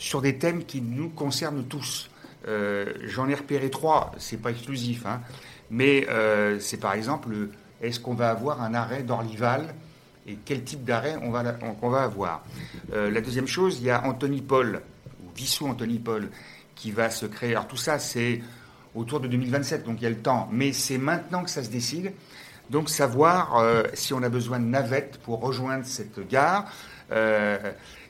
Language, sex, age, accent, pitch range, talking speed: French, male, 60-79, French, 115-145 Hz, 190 wpm